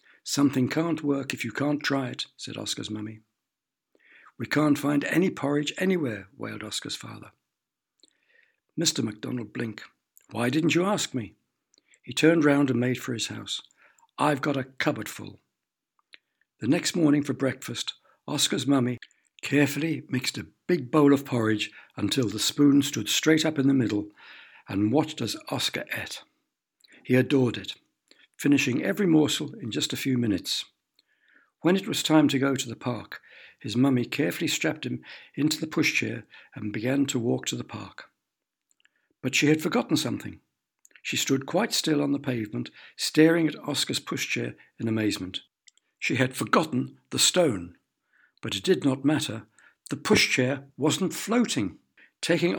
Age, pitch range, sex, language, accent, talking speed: 60-79, 125-155 Hz, male, English, British, 155 wpm